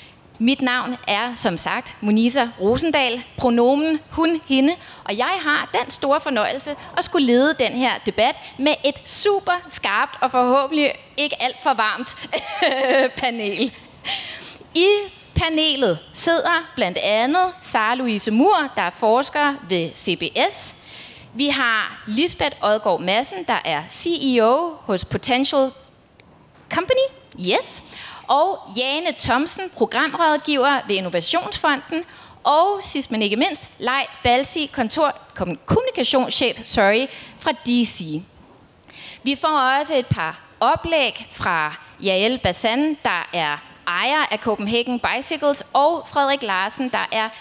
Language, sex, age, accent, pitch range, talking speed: Danish, female, 20-39, native, 225-305 Hz, 120 wpm